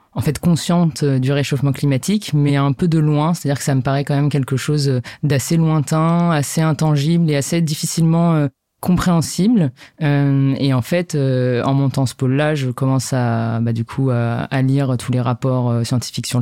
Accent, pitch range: French, 130-155 Hz